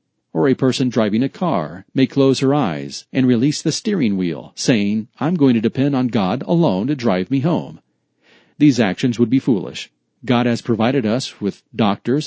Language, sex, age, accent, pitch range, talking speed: English, male, 40-59, American, 105-135 Hz, 185 wpm